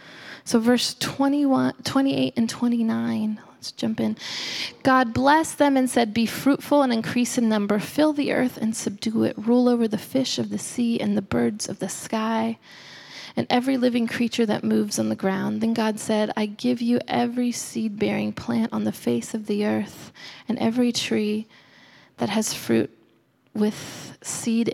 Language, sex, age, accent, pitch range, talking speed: English, female, 20-39, American, 180-240 Hz, 170 wpm